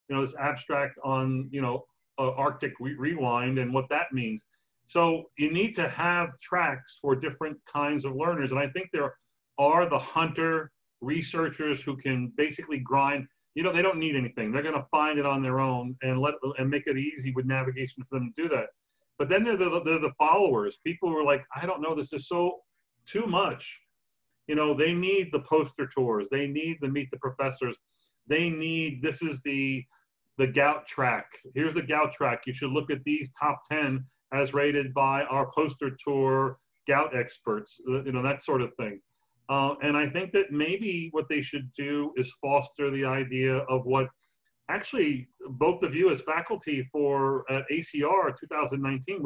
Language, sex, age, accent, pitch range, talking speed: English, male, 40-59, American, 135-160 Hz, 190 wpm